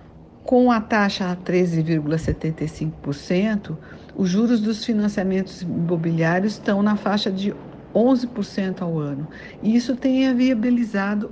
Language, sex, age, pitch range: Portuguese, female, 50-69, 165-225 Hz